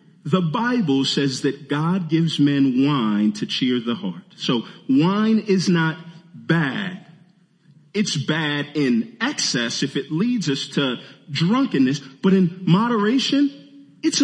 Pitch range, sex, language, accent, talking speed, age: 165-220 Hz, male, English, American, 130 wpm, 40-59